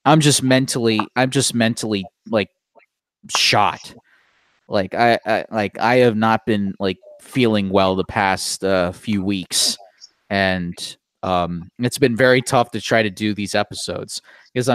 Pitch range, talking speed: 100-125 Hz, 150 wpm